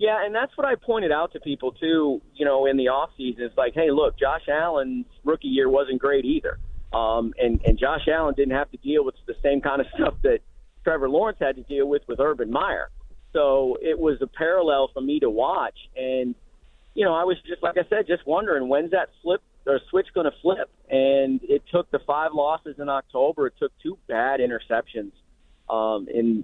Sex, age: male, 40-59